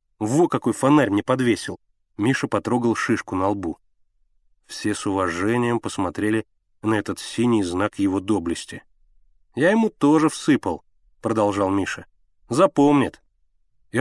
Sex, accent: male, native